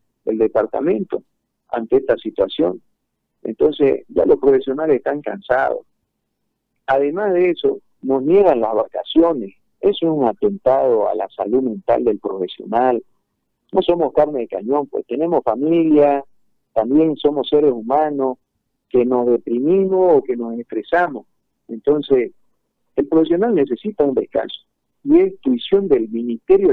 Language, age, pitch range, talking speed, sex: Spanish, 50-69, 135-215 Hz, 130 wpm, male